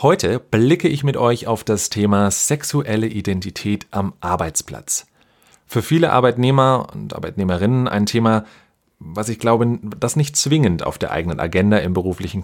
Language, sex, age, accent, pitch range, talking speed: German, male, 30-49, German, 95-120 Hz, 150 wpm